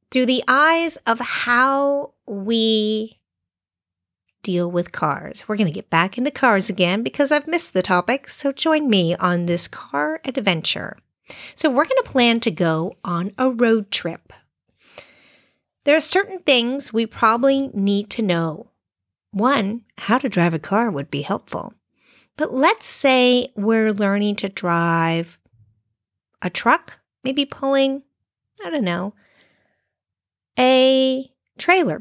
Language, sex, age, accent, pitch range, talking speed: English, female, 40-59, American, 180-270 Hz, 135 wpm